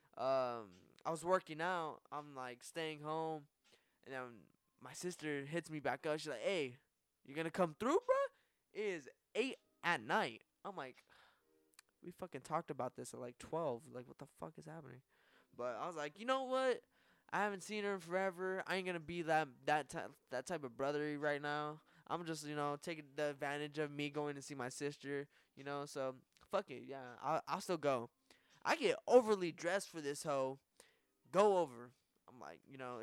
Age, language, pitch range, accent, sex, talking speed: 10-29, English, 130-165 Hz, American, male, 195 wpm